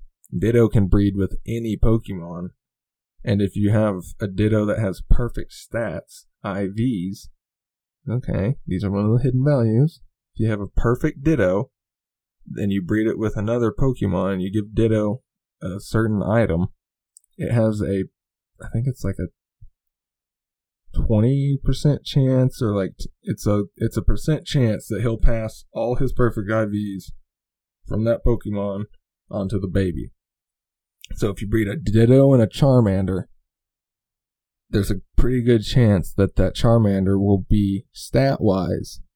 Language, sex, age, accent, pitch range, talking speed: English, male, 20-39, American, 95-115 Hz, 150 wpm